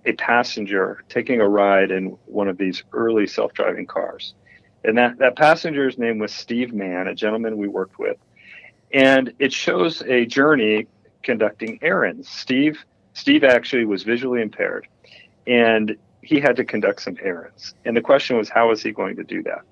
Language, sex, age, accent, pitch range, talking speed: English, male, 40-59, American, 105-140 Hz, 170 wpm